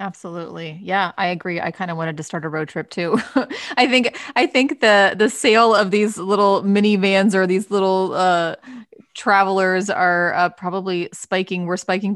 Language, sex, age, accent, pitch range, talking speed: English, female, 30-49, American, 170-195 Hz, 180 wpm